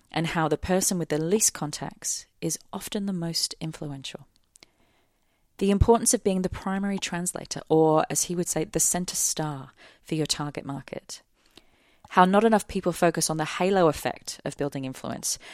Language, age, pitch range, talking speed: English, 30-49, 150-185 Hz, 170 wpm